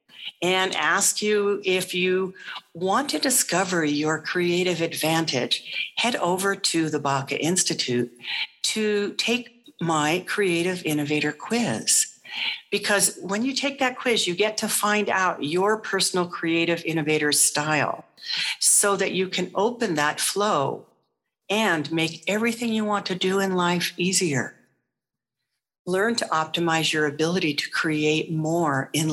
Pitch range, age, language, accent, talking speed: 160-210 Hz, 60-79, English, American, 135 wpm